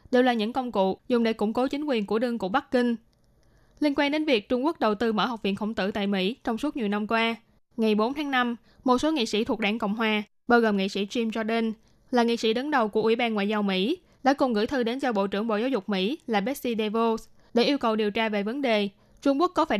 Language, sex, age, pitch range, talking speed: Vietnamese, female, 20-39, 210-260 Hz, 280 wpm